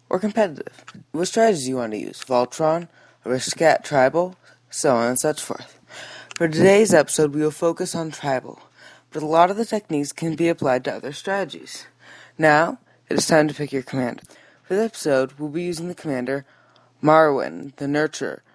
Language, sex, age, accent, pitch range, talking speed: English, female, 20-39, American, 135-175 Hz, 180 wpm